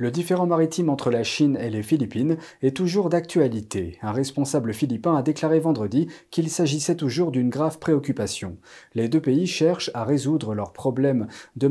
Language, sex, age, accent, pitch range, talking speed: French, male, 40-59, French, 120-160 Hz, 170 wpm